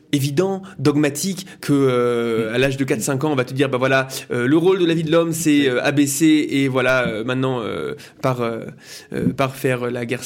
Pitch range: 130-180 Hz